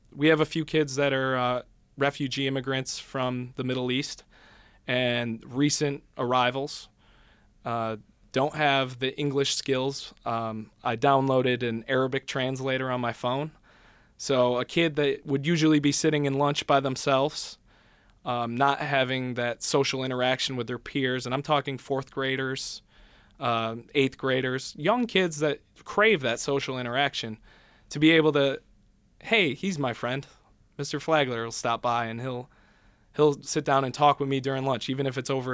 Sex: male